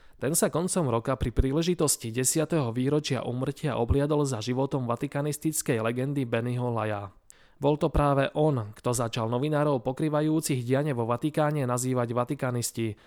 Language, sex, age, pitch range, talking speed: Slovak, male, 20-39, 120-150 Hz, 135 wpm